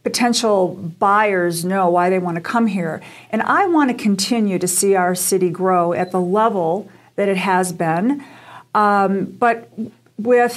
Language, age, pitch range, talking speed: English, 50-69, 185-225 Hz, 165 wpm